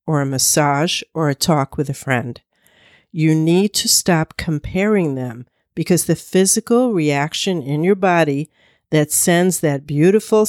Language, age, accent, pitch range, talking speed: English, 50-69, American, 150-195 Hz, 150 wpm